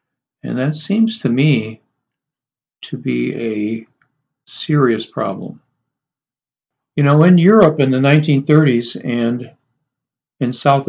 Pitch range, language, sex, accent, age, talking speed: 120-150 Hz, English, male, American, 50-69, 110 wpm